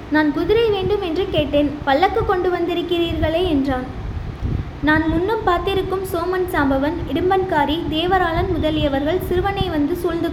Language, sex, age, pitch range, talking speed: Tamil, female, 20-39, 305-380 Hz, 115 wpm